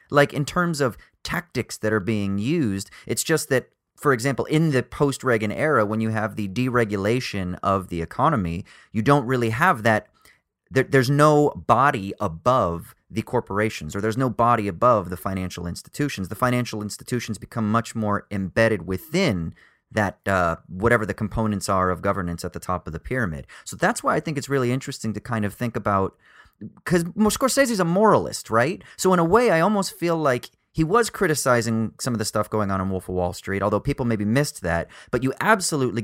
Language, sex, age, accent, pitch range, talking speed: English, male, 30-49, American, 100-135 Hz, 190 wpm